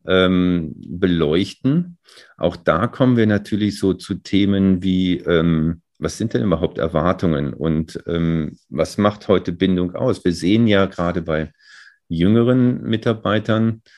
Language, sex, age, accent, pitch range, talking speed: German, male, 40-59, German, 85-105 Hz, 135 wpm